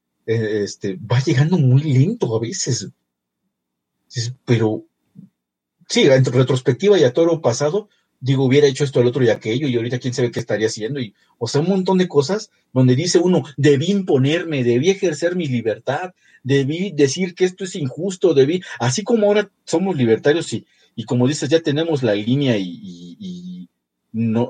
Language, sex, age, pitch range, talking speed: Italian, male, 50-69, 115-165 Hz, 175 wpm